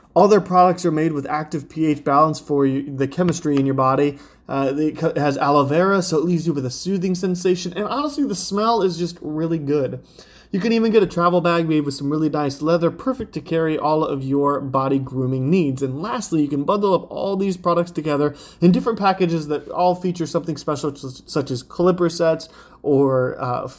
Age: 20-39